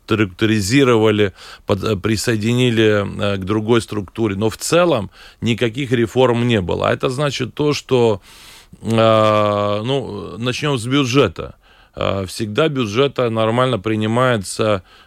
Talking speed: 105 wpm